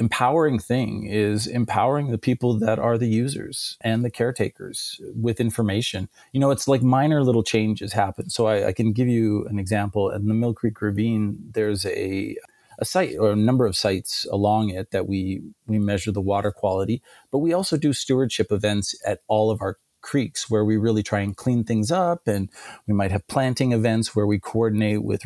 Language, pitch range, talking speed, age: English, 105-125 Hz, 195 wpm, 30-49